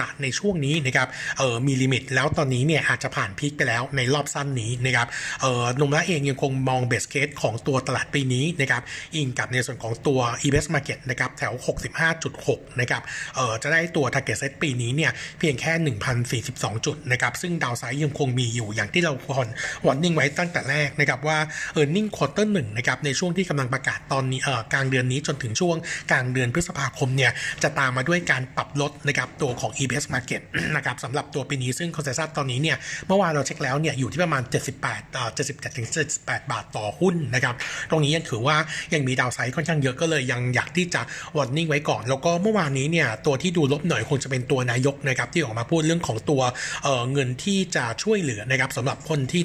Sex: male